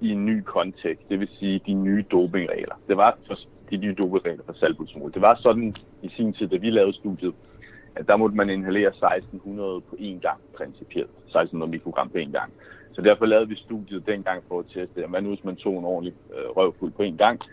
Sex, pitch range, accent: male, 95-110 Hz, native